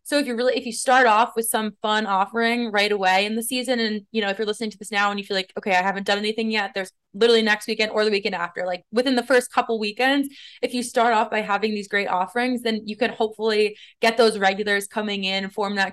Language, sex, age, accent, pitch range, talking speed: English, female, 20-39, American, 195-230 Hz, 265 wpm